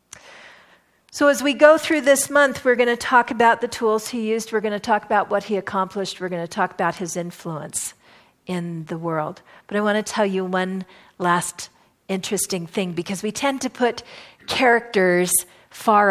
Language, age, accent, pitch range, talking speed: English, 50-69, American, 175-215 Hz, 190 wpm